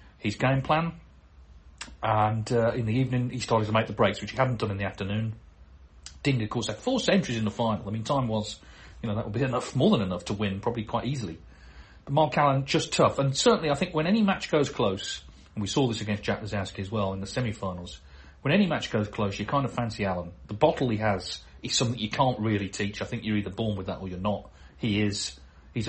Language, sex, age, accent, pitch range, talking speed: English, male, 40-59, British, 100-130 Hz, 250 wpm